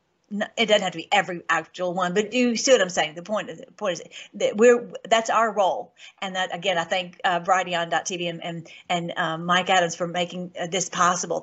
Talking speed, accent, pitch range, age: 220 wpm, American, 195-265 Hz, 50-69